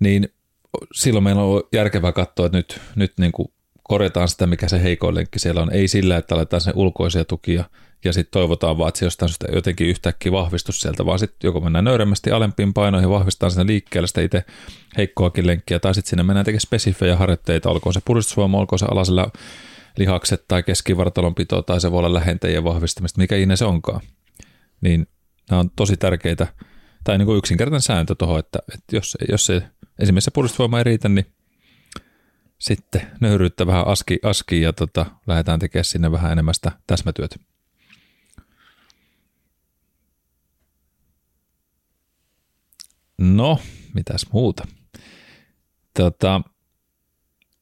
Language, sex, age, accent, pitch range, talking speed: Finnish, male, 30-49, native, 85-100 Hz, 145 wpm